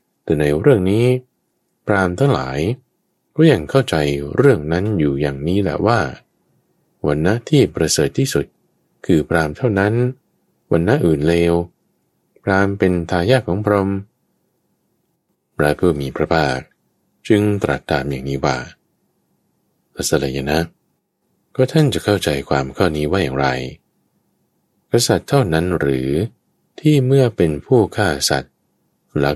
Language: Thai